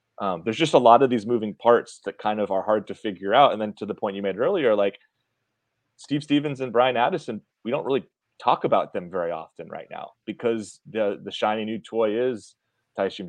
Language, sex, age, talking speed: English, male, 30-49, 220 wpm